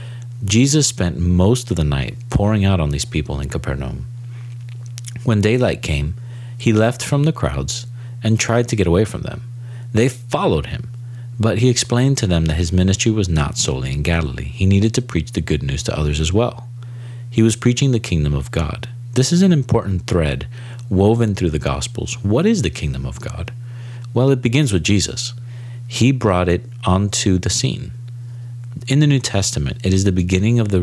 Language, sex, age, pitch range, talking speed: English, male, 40-59, 85-120 Hz, 190 wpm